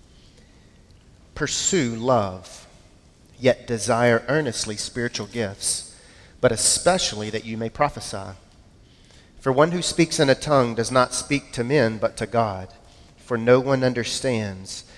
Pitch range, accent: 110-145 Hz, American